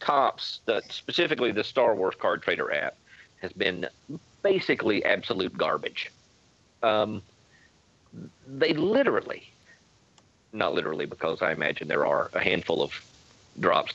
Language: English